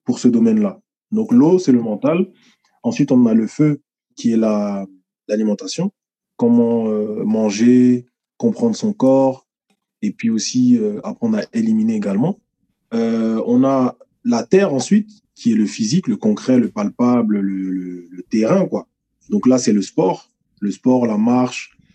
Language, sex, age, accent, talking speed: French, male, 20-39, French, 160 wpm